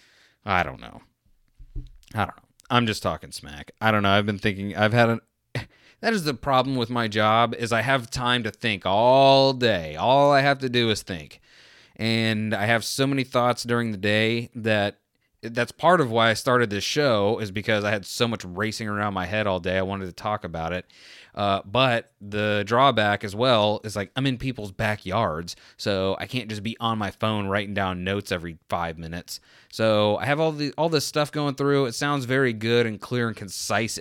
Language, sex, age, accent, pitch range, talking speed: English, male, 30-49, American, 100-120 Hz, 215 wpm